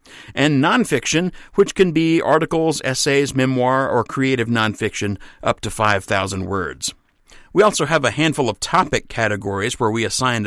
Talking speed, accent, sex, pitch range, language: 150 wpm, American, male, 110-150 Hz, English